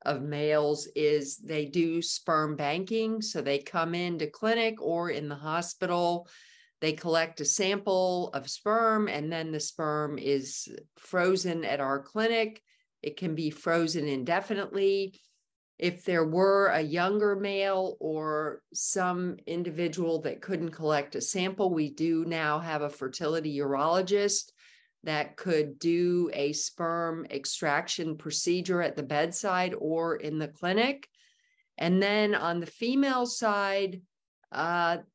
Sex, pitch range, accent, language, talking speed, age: female, 155-195 Hz, American, English, 135 wpm, 50-69